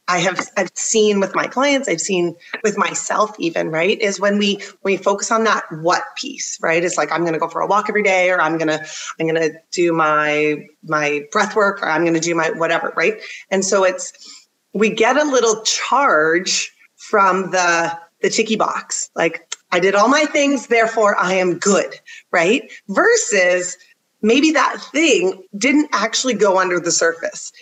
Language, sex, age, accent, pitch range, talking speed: English, female, 30-49, American, 185-255 Hz, 185 wpm